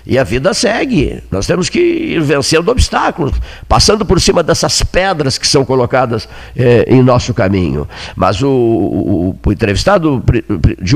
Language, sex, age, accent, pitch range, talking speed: Portuguese, male, 50-69, Brazilian, 105-155 Hz, 155 wpm